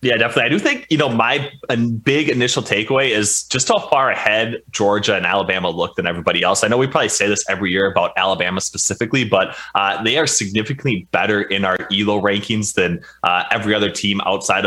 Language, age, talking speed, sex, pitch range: English, 20-39, 205 wpm, male, 95-115 Hz